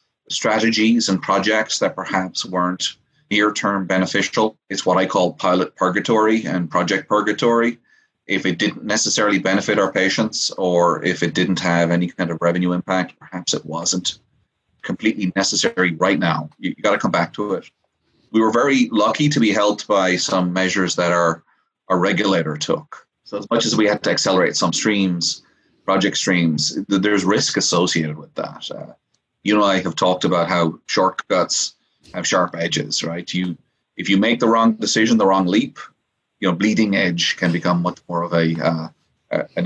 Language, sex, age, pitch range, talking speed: English, male, 30-49, 90-105 Hz, 175 wpm